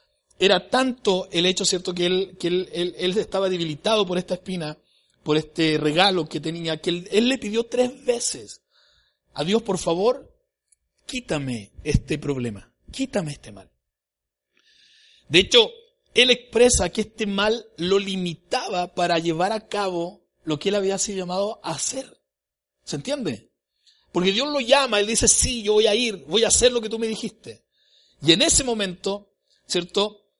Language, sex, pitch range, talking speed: Spanish, male, 145-205 Hz, 170 wpm